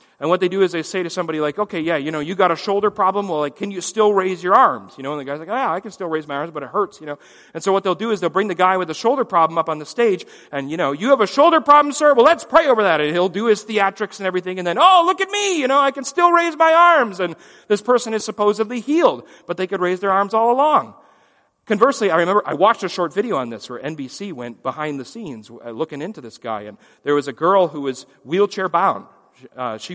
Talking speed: 285 wpm